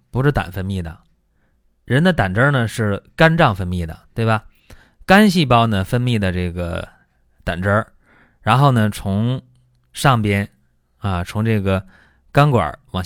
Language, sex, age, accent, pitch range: Chinese, male, 20-39, native, 90-135 Hz